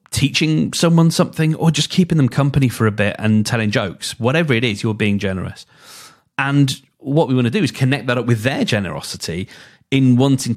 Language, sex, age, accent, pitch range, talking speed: English, male, 40-59, British, 100-140 Hz, 200 wpm